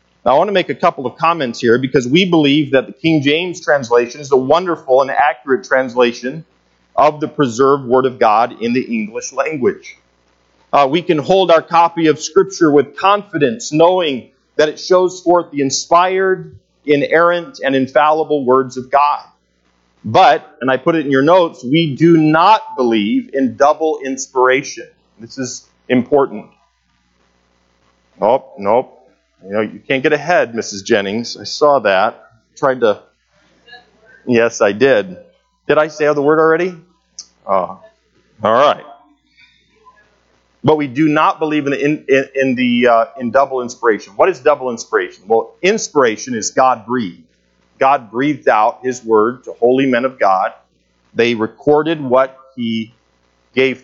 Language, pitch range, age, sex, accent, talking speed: English, 120-165 Hz, 40-59, male, American, 155 wpm